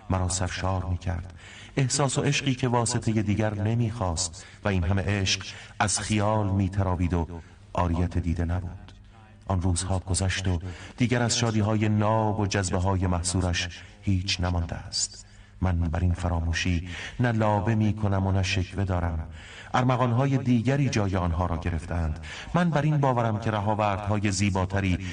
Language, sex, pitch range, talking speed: Persian, male, 90-110 Hz, 135 wpm